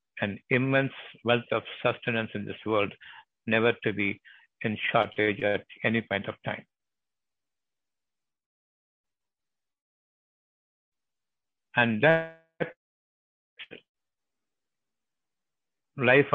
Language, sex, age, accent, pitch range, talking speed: Tamil, male, 60-79, native, 110-135 Hz, 75 wpm